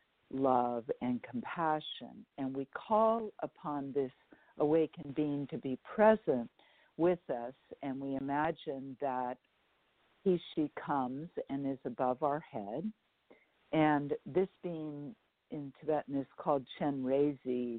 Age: 50-69